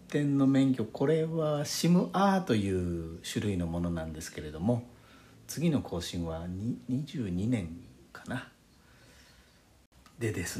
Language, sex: Japanese, male